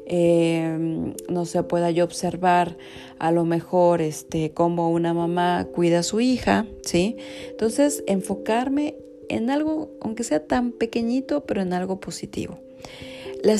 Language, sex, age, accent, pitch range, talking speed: Spanish, female, 40-59, Mexican, 165-200 Hz, 140 wpm